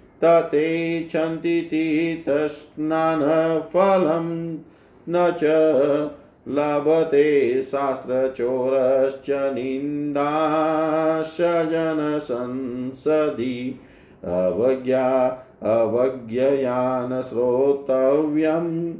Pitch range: 130-165 Hz